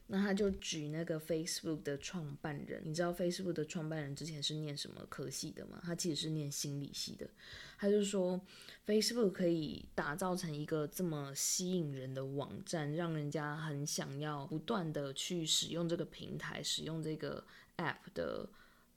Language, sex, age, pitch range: Chinese, female, 20-39, 150-180 Hz